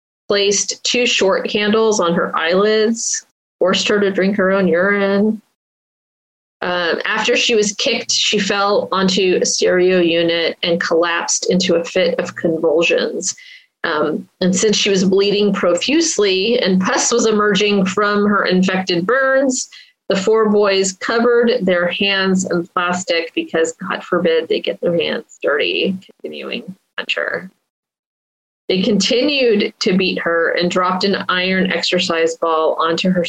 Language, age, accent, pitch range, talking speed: English, 30-49, American, 175-220 Hz, 140 wpm